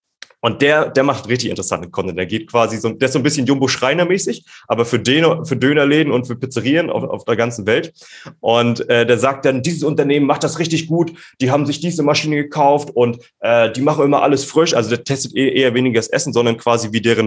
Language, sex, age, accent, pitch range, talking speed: German, male, 30-49, German, 120-150 Hz, 220 wpm